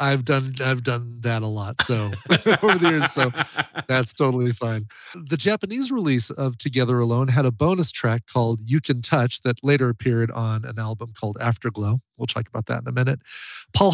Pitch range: 115-160 Hz